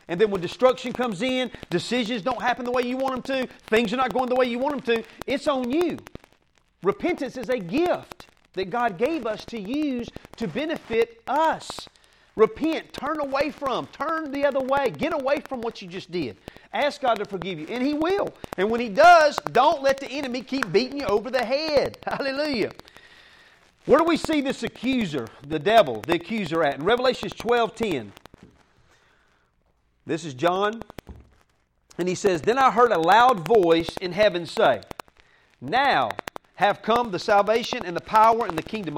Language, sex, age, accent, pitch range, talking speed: English, male, 40-59, American, 180-265 Hz, 185 wpm